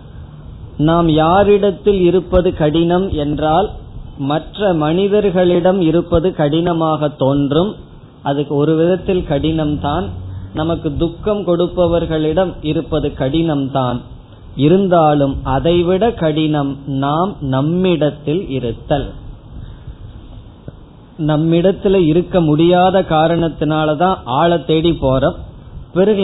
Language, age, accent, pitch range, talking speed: Tamil, 20-39, native, 140-180 Hz, 80 wpm